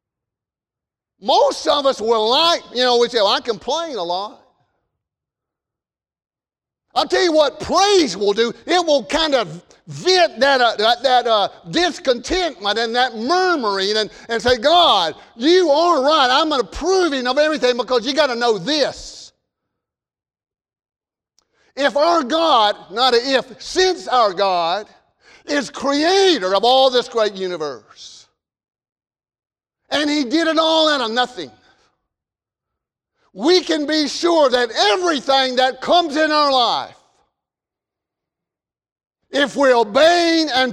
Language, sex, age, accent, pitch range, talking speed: English, male, 50-69, American, 230-330 Hz, 135 wpm